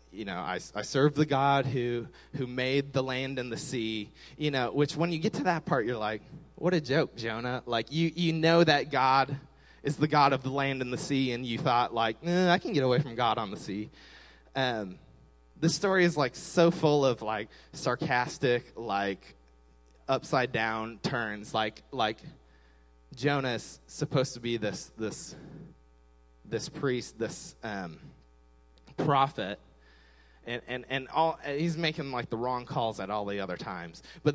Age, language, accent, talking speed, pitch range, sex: 20-39, English, American, 180 wpm, 115-155 Hz, male